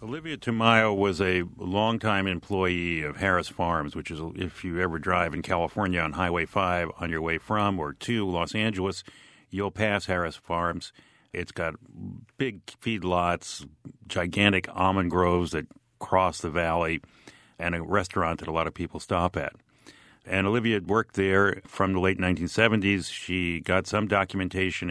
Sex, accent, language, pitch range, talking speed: male, American, English, 85-100 Hz, 160 wpm